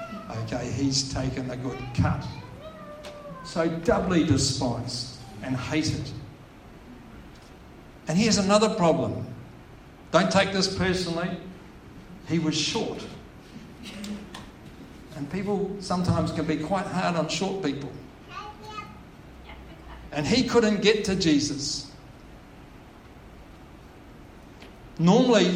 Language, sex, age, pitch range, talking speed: English, male, 60-79, 130-165 Hz, 90 wpm